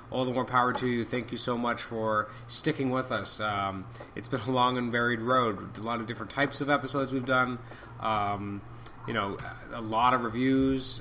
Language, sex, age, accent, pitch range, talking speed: English, male, 30-49, American, 100-120 Hz, 205 wpm